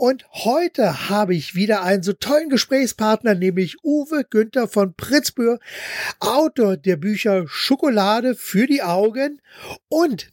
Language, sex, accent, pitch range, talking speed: German, male, German, 165-225 Hz, 130 wpm